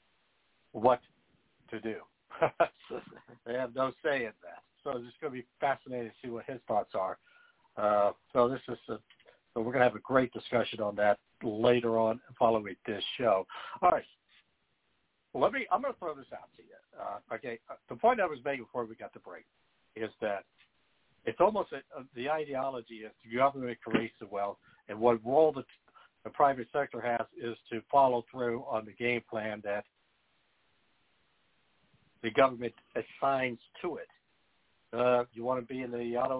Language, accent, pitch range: English, American, 110-130 Hz